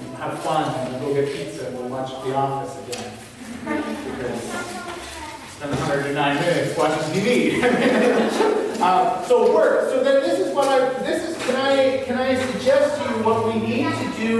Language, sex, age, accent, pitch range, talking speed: English, male, 40-59, American, 175-260 Hz, 165 wpm